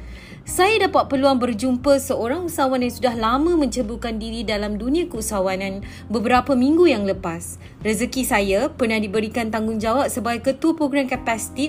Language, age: Malay, 30-49